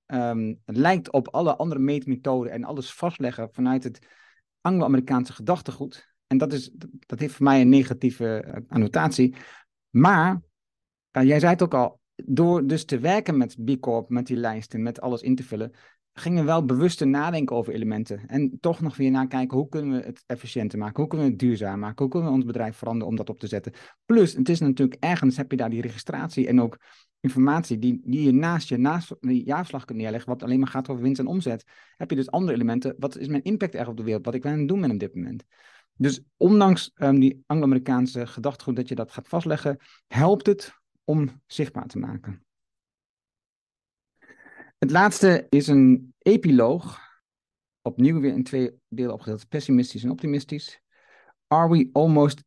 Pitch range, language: 120-145 Hz, Dutch